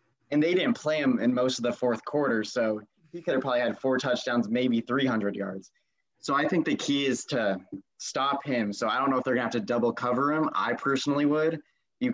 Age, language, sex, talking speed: 20-39, English, male, 235 wpm